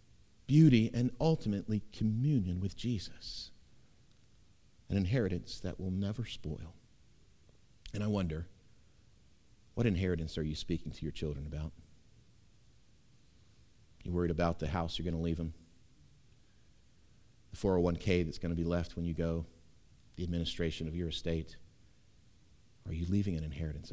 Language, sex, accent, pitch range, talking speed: English, male, American, 85-105 Hz, 135 wpm